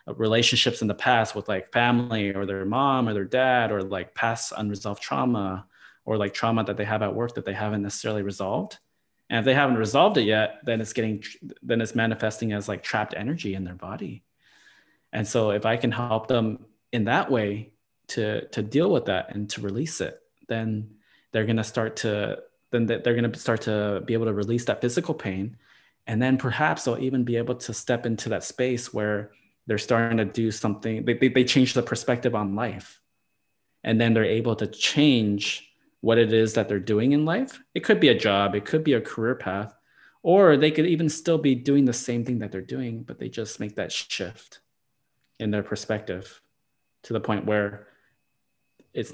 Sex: male